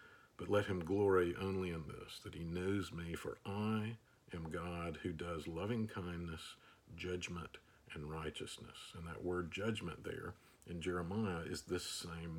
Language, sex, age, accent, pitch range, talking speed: English, male, 50-69, American, 85-110 Hz, 155 wpm